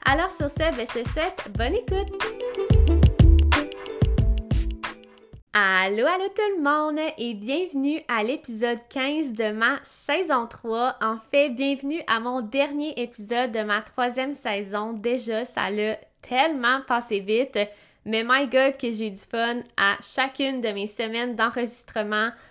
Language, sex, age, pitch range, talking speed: French, female, 20-39, 220-270 Hz, 140 wpm